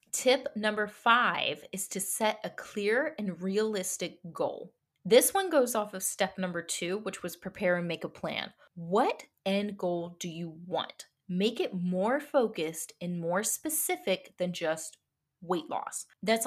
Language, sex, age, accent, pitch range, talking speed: English, female, 20-39, American, 175-230 Hz, 160 wpm